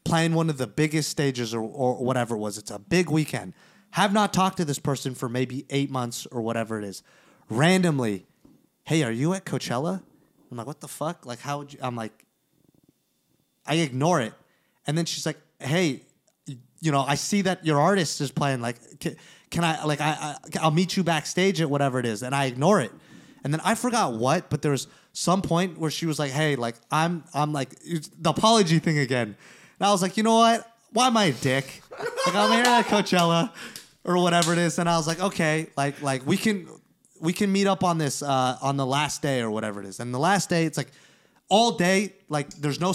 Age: 30-49